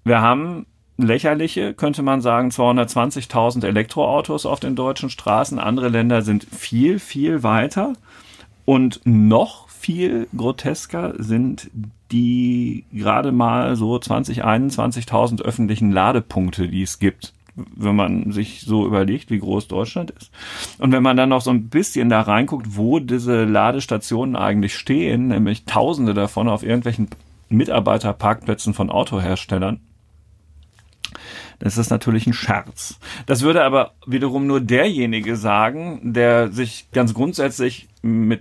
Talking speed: 130 wpm